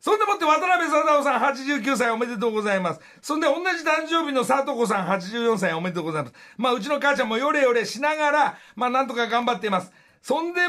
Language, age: Japanese, 60-79